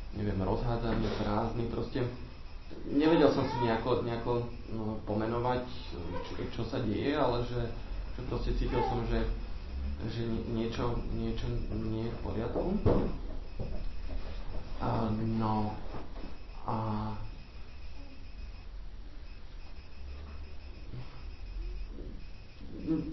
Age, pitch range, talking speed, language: 40-59, 105-120 Hz, 80 wpm, Slovak